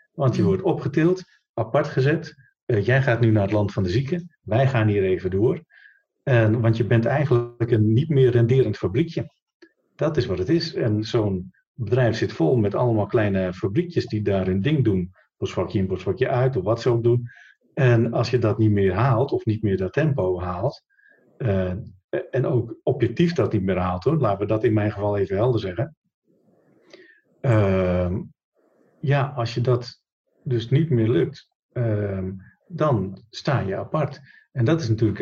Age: 50-69